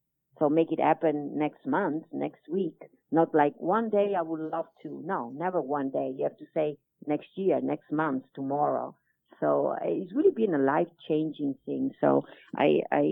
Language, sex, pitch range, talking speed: English, female, 140-175 Hz, 185 wpm